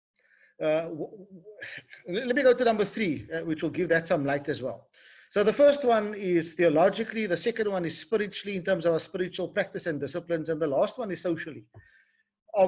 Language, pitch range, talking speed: English, 155-210 Hz, 200 wpm